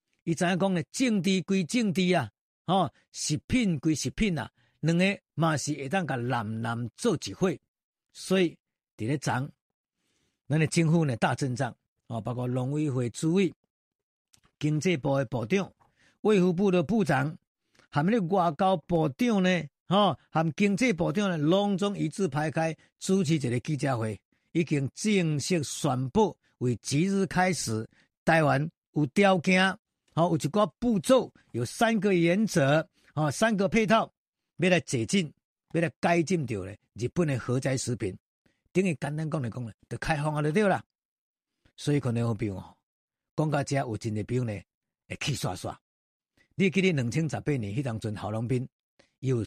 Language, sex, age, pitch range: Chinese, male, 50-69, 125-185 Hz